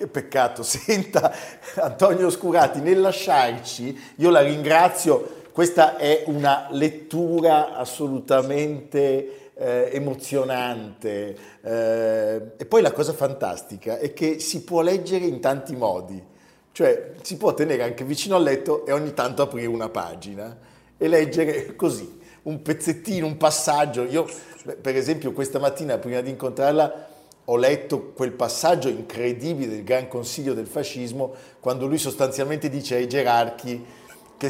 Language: Italian